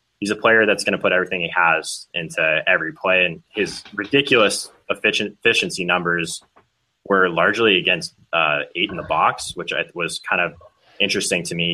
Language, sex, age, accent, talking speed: English, male, 20-39, American, 180 wpm